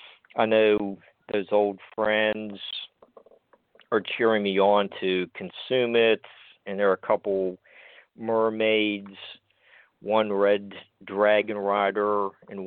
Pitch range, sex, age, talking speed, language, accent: 100-120 Hz, male, 50-69, 110 wpm, English, American